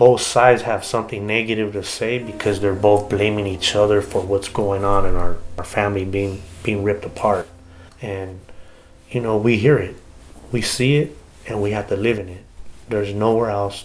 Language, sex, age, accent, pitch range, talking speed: English, male, 30-49, American, 100-120 Hz, 190 wpm